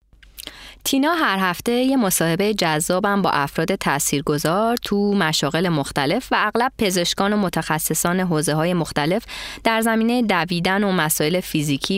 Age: 20-39